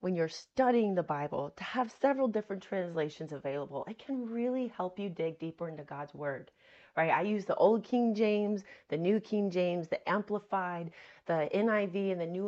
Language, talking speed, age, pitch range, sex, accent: English, 190 wpm, 30-49, 180-270 Hz, female, American